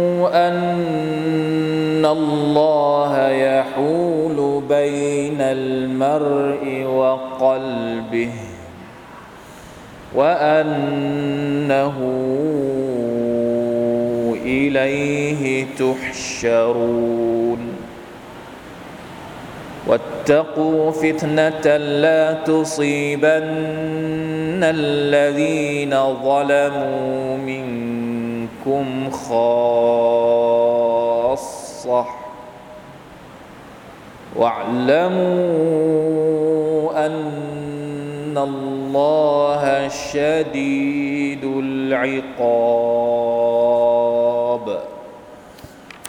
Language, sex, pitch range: Thai, male, 130-155 Hz